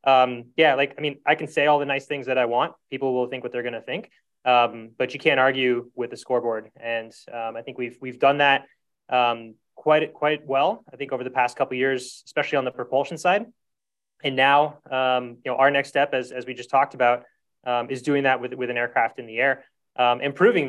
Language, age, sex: English, 20-39, male